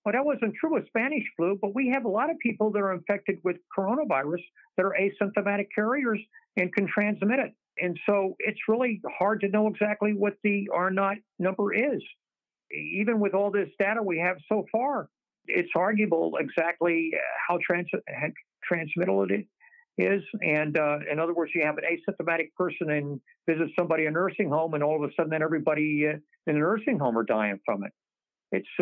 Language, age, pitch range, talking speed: English, 60-79, 150-205 Hz, 185 wpm